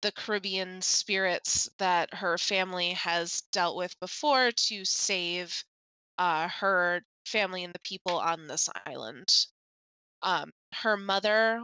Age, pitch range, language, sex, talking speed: 20-39, 175-210 Hz, English, female, 125 wpm